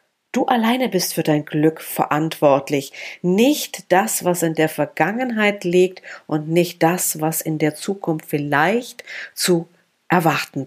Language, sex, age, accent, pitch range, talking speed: German, female, 50-69, German, 160-205 Hz, 135 wpm